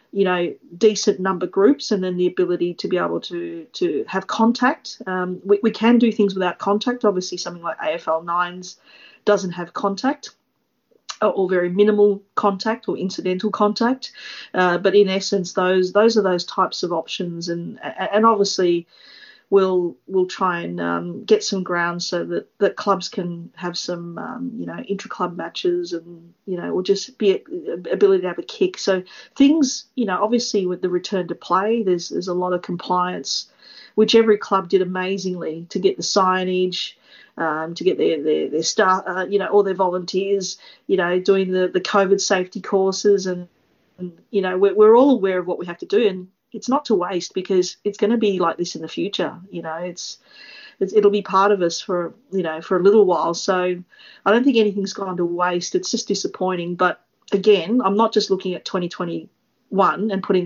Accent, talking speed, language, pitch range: Australian, 200 wpm, English, 180-210 Hz